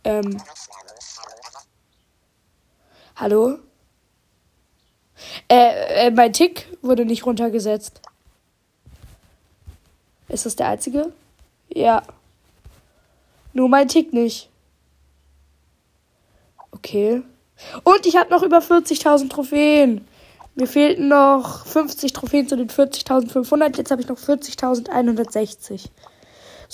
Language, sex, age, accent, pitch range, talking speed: German, female, 10-29, German, 220-290 Hz, 90 wpm